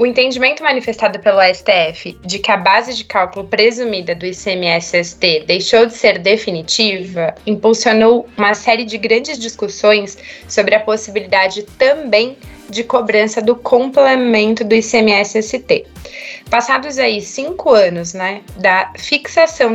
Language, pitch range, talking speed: English, 200-245 Hz, 125 wpm